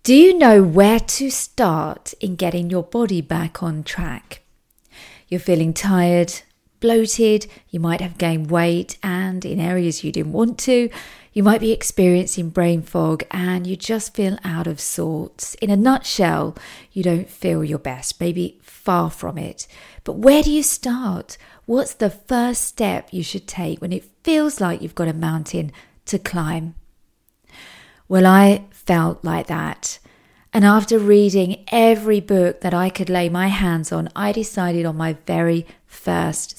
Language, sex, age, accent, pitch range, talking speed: English, female, 40-59, British, 170-215 Hz, 160 wpm